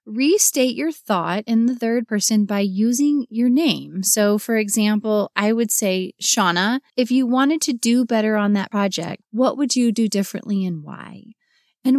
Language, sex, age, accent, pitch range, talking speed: English, female, 30-49, American, 205-275 Hz, 175 wpm